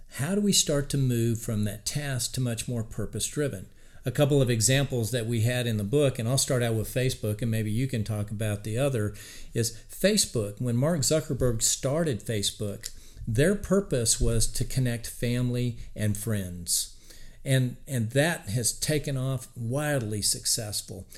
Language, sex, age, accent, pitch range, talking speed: English, male, 50-69, American, 110-140 Hz, 170 wpm